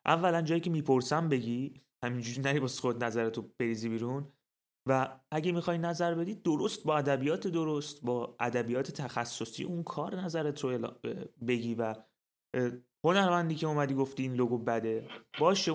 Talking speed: 135 wpm